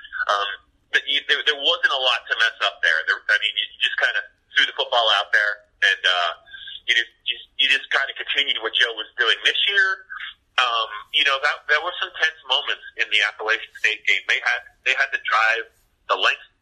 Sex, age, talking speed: male, 30-49, 230 wpm